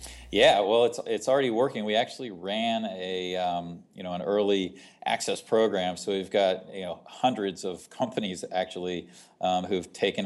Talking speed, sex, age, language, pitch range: 170 wpm, male, 40-59, English, 95-105 Hz